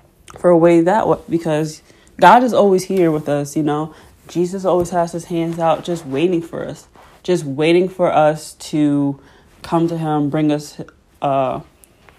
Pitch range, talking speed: 150-180 Hz, 170 wpm